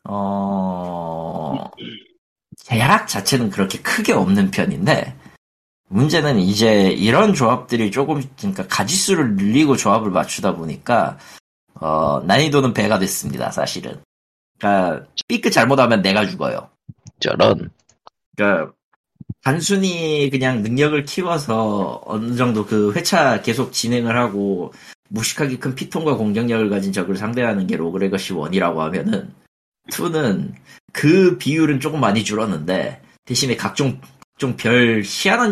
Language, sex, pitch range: Korean, male, 100-150 Hz